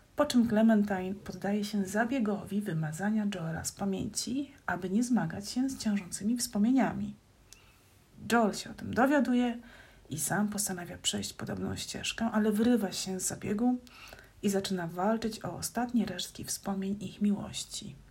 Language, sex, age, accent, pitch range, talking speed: Polish, female, 30-49, native, 190-225 Hz, 140 wpm